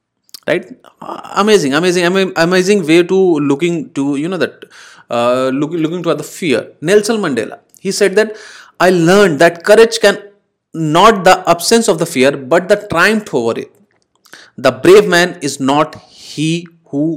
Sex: male